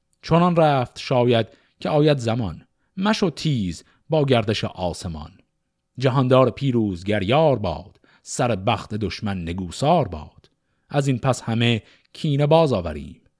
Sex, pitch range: male, 100-140 Hz